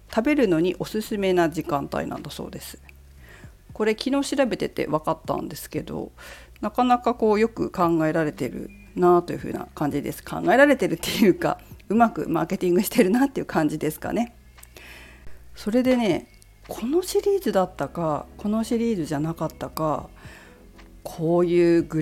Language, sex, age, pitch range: Japanese, female, 40-59, 145-225 Hz